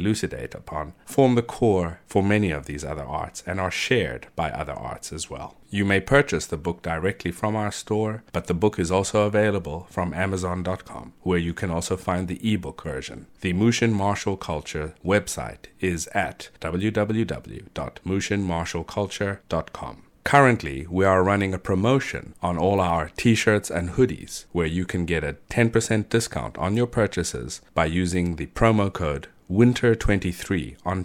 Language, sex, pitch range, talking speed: English, male, 85-105 Hz, 160 wpm